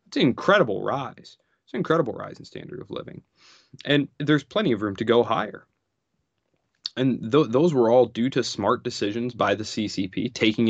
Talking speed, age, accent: 180 wpm, 20-39, American